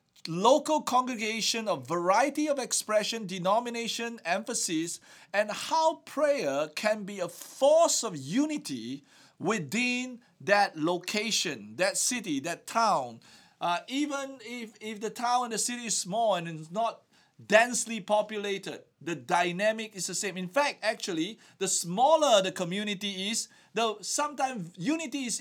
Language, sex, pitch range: English, male, 180-240 Hz